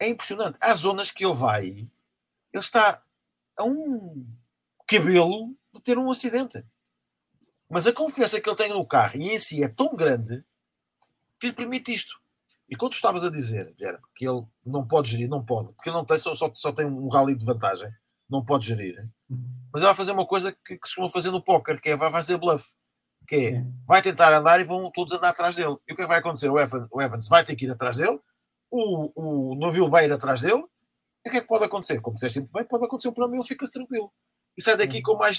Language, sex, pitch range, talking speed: English, male, 130-215 Hz, 240 wpm